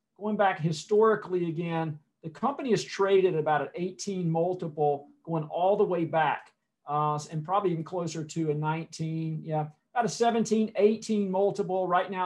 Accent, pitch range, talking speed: American, 165-200 Hz, 160 wpm